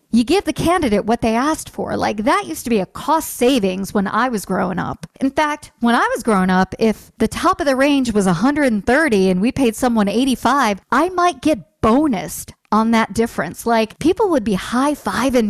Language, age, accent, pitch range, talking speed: English, 40-59, American, 190-255 Hz, 205 wpm